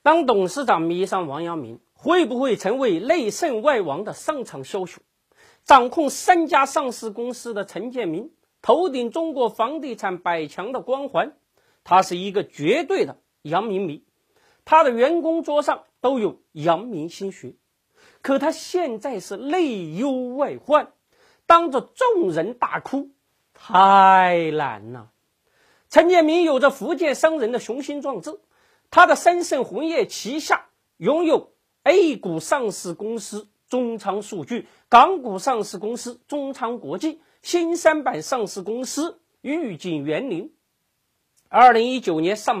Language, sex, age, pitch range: Chinese, male, 40-59, 210-325 Hz